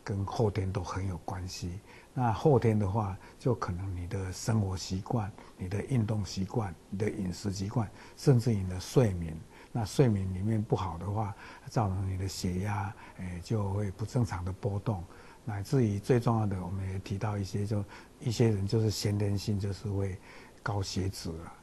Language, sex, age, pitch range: Chinese, male, 60-79, 95-115 Hz